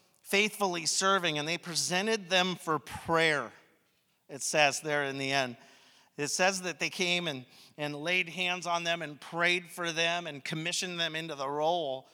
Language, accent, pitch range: English, American, 130-165 Hz